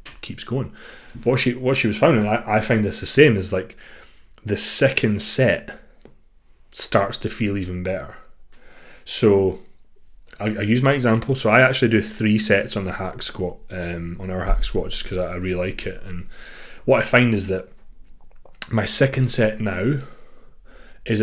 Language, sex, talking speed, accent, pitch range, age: English, male, 180 wpm, British, 95-115 Hz, 30-49